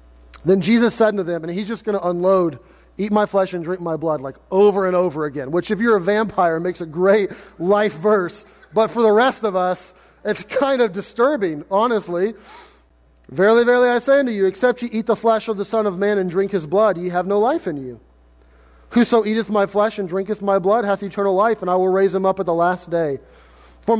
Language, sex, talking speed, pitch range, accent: English, male, 230 wpm, 175-215 Hz, American